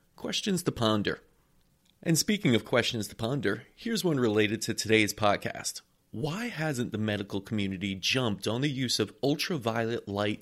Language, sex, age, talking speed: English, male, 30-49, 155 wpm